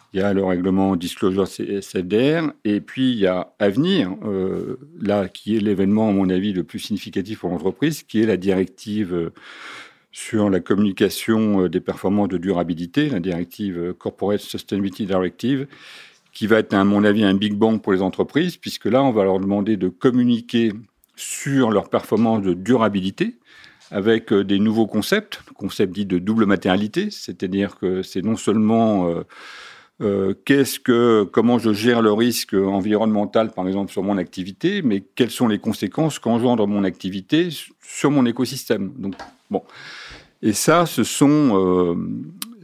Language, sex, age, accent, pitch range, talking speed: French, male, 50-69, French, 95-125 Hz, 160 wpm